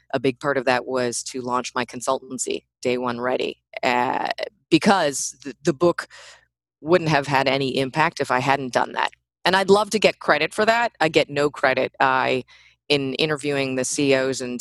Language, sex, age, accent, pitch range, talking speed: English, female, 20-39, American, 125-160 Hz, 185 wpm